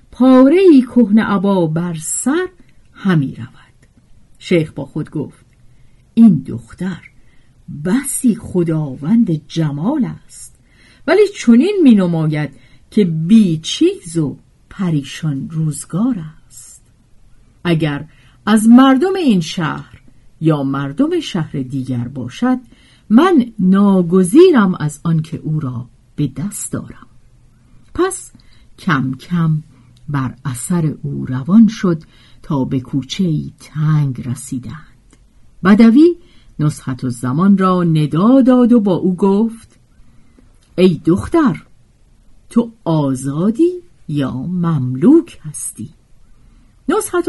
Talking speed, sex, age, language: 105 wpm, female, 50-69, Persian